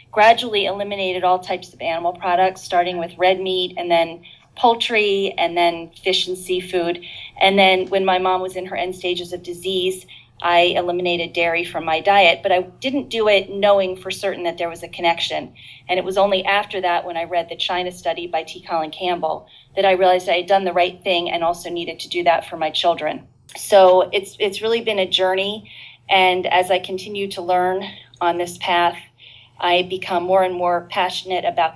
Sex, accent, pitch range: female, American, 170-190 Hz